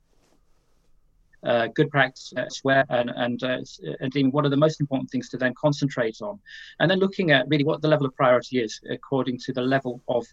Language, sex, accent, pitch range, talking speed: English, male, British, 125-150 Hz, 205 wpm